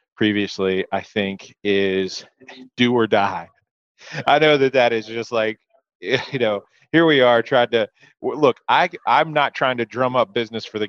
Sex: male